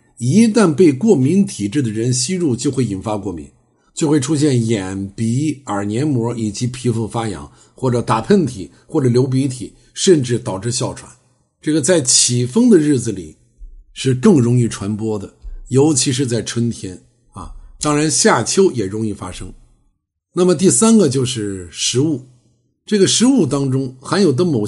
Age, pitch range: 50-69, 105-150 Hz